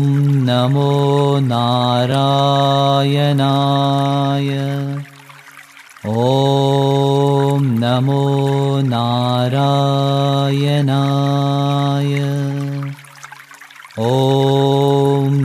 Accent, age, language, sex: Indian, 40-59, Italian, male